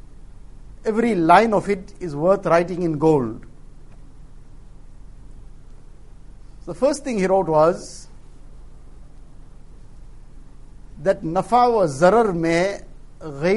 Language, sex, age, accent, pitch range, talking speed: English, male, 60-79, Indian, 140-225 Hz, 85 wpm